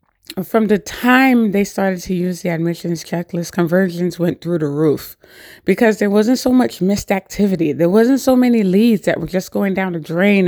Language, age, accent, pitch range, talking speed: English, 20-39, American, 180-230 Hz, 195 wpm